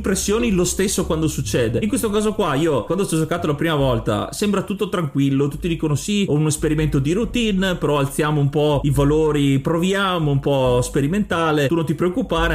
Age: 30-49